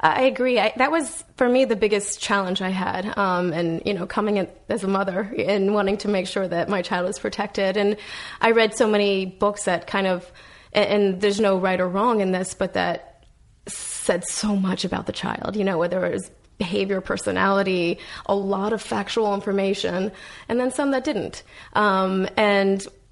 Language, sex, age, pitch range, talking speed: English, female, 20-39, 190-220 Hz, 195 wpm